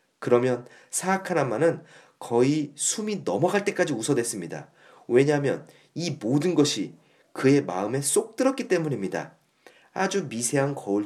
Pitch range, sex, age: 115-170 Hz, male, 40-59